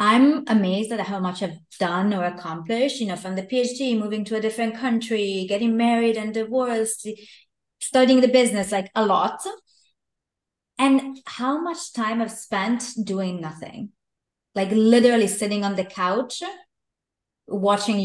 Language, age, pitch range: English, 20-39, 195-235 Hz